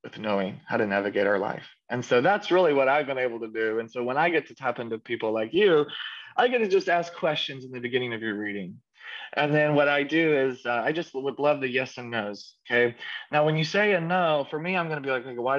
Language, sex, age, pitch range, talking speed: English, male, 20-39, 115-140 Hz, 270 wpm